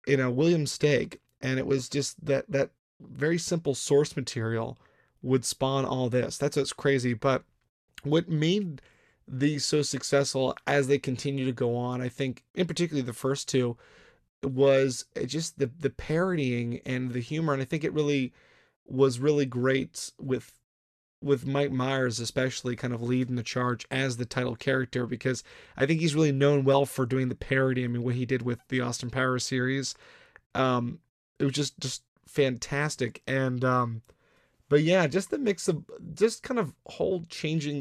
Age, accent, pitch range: 30-49, American, 125-145 Hz